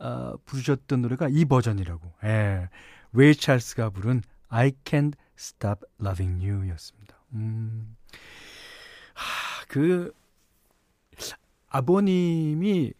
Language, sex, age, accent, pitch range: Korean, male, 40-59, native, 105-155 Hz